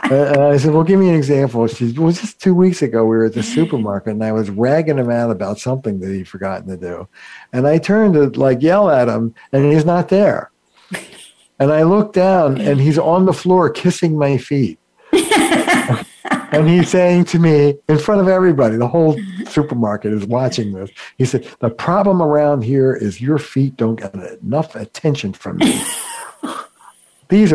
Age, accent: 60-79, American